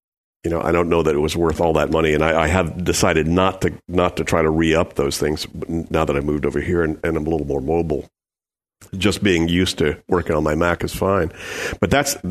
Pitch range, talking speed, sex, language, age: 75-90 Hz, 255 wpm, male, English, 50-69